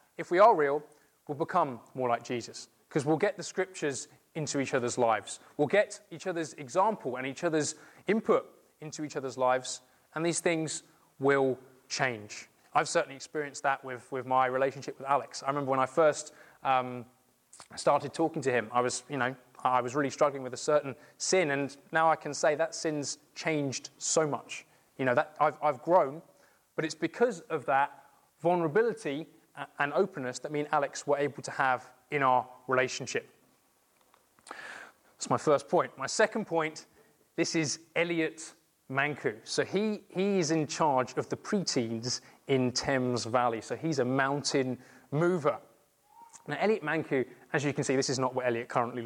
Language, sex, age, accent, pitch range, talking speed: English, male, 20-39, British, 130-160 Hz, 175 wpm